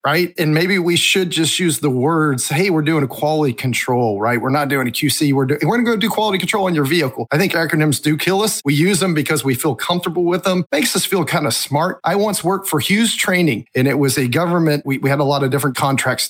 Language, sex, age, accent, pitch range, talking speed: English, male, 40-59, American, 135-190 Hz, 270 wpm